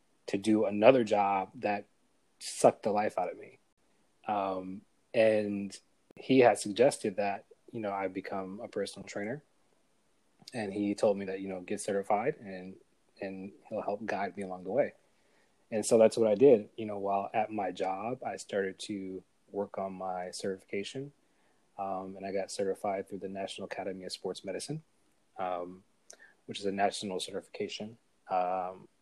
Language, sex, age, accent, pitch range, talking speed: English, male, 20-39, American, 95-105 Hz, 165 wpm